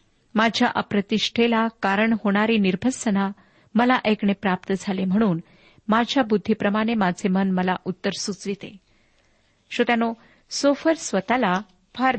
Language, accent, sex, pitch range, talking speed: Marathi, native, female, 190-240 Hz, 105 wpm